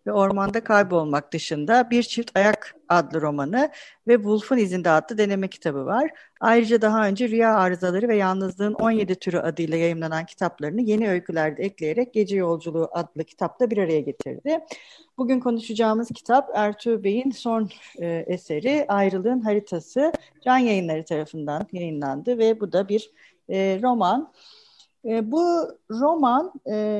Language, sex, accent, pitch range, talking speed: Turkish, female, native, 175-240 Hz, 130 wpm